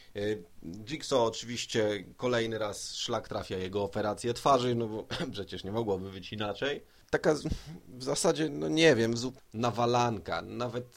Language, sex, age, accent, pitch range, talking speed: Polish, male, 30-49, native, 105-125 Hz, 135 wpm